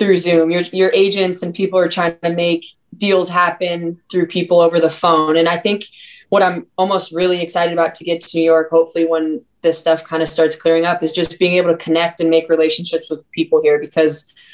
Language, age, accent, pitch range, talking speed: English, 20-39, American, 165-180 Hz, 225 wpm